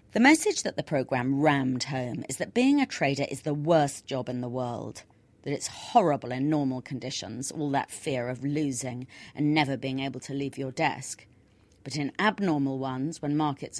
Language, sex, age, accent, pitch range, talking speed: English, female, 30-49, British, 125-155 Hz, 190 wpm